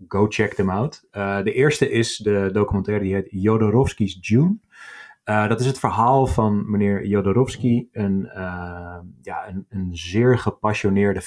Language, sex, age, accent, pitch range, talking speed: Dutch, male, 30-49, Dutch, 95-115 Hz, 155 wpm